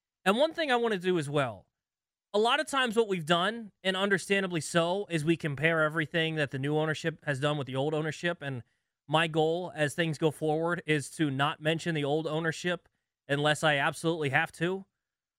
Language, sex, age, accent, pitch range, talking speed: English, male, 20-39, American, 150-195 Hz, 205 wpm